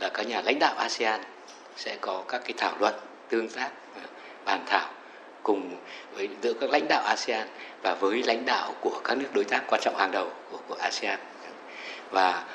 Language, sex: Vietnamese, male